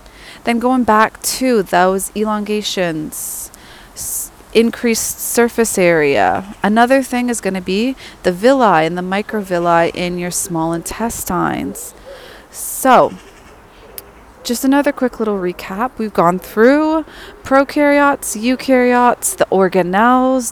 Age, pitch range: 30-49, 180-235 Hz